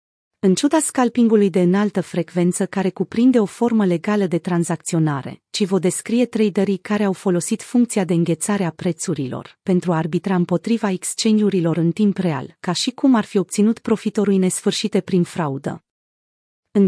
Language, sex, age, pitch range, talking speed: Romanian, female, 30-49, 175-220 Hz, 155 wpm